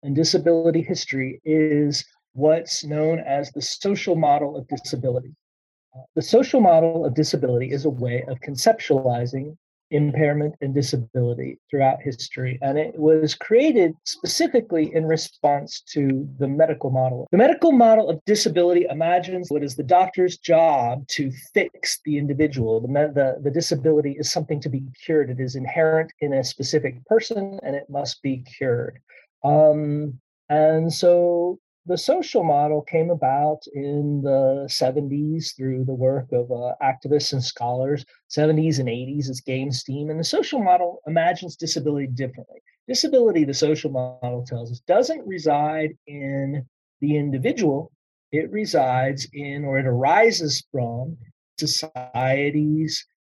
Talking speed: 140 wpm